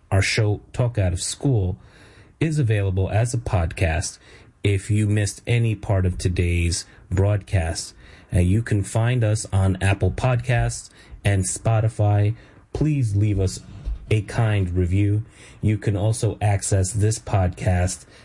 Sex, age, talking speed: male, 30-49, 130 wpm